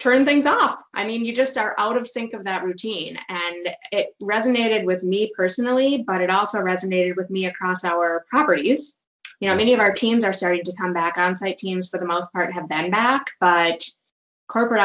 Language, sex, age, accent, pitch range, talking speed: English, female, 20-39, American, 175-210 Hz, 205 wpm